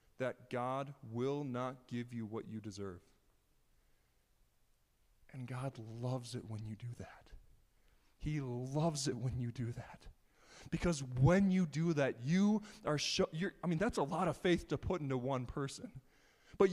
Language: English